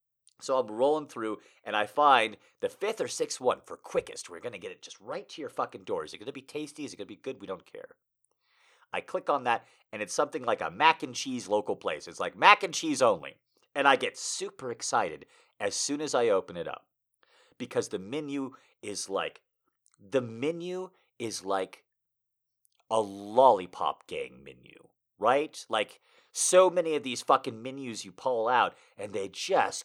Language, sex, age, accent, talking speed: English, male, 50-69, American, 200 wpm